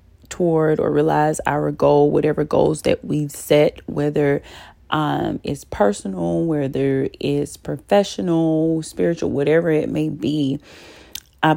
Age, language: 30-49, English